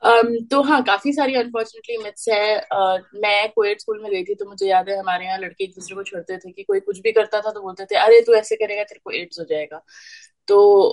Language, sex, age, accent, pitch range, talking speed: Hindi, female, 20-39, native, 190-255 Hz, 240 wpm